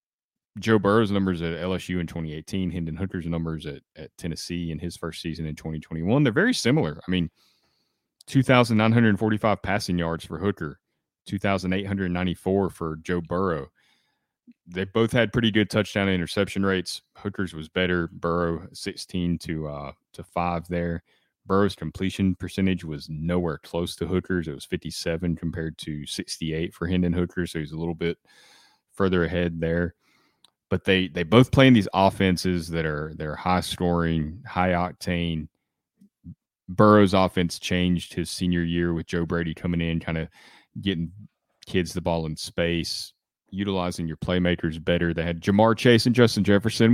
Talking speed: 150 wpm